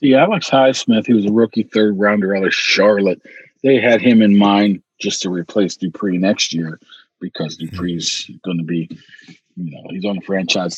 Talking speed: 185 wpm